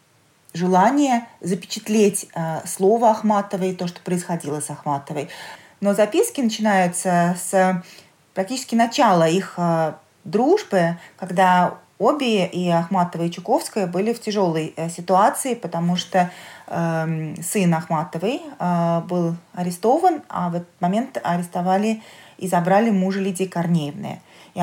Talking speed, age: 115 wpm, 20-39